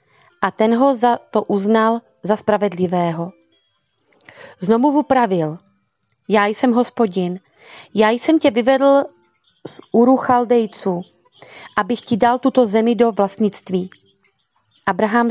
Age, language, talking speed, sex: 30-49, Slovak, 105 wpm, female